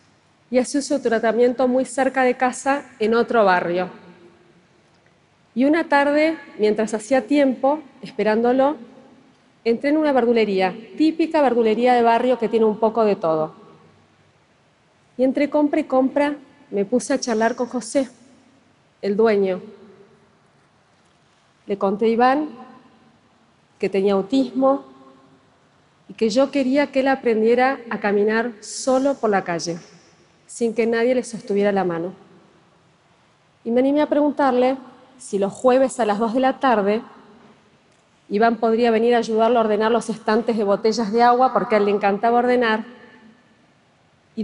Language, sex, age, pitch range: Chinese, female, 40-59, 210-260 Hz